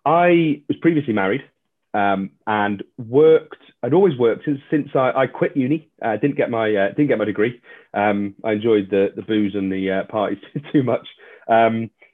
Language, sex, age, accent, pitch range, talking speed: English, male, 30-49, British, 100-140 Hz, 175 wpm